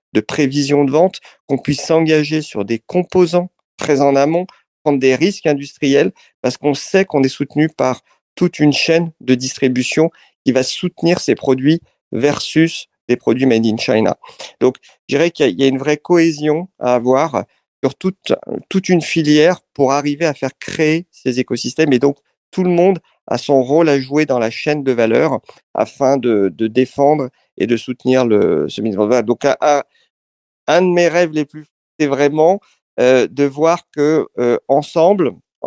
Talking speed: 175 wpm